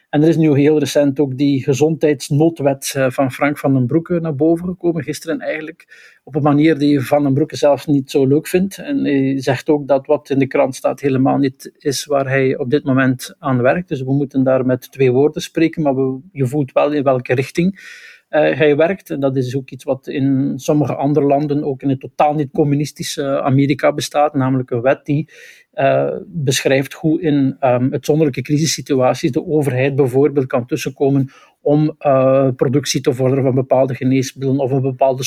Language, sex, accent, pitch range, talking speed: Dutch, male, Dutch, 135-155 Hz, 190 wpm